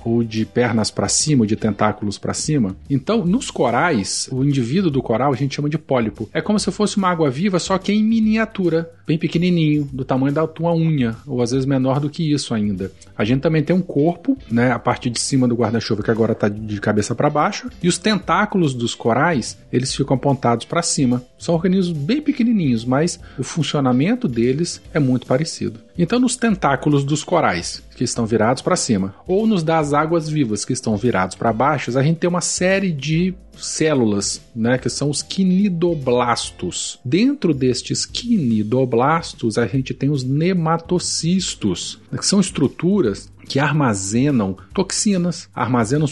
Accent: Brazilian